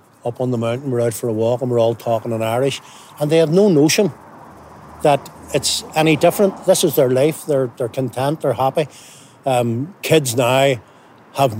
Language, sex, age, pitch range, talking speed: English, male, 60-79, 125-155 Hz, 190 wpm